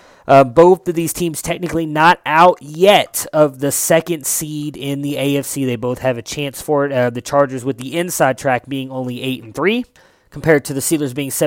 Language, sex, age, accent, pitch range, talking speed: English, male, 20-39, American, 125-150 Hz, 210 wpm